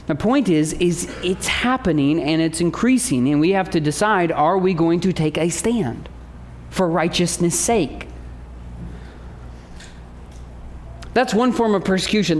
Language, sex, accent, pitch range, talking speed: English, male, American, 145-215 Hz, 140 wpm